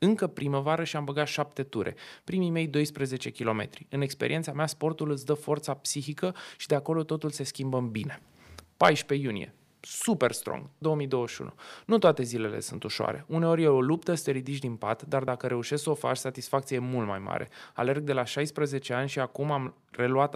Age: 20-39